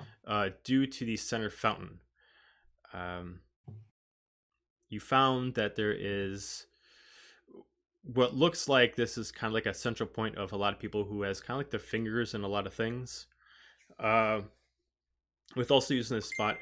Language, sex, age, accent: English, male, 20-39, American